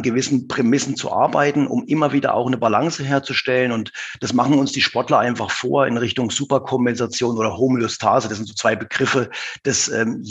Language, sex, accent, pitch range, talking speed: German, male, German, 115-135 Hz, 180 wpm